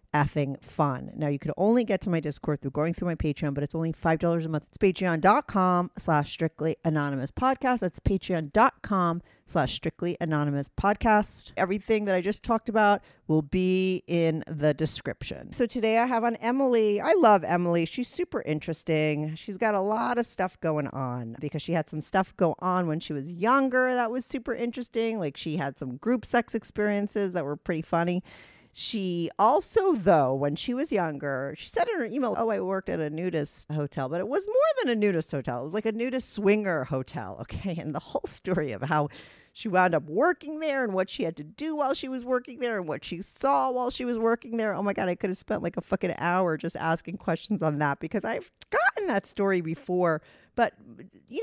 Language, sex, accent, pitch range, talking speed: English, female, American, 155-225 Hz, 210 wpm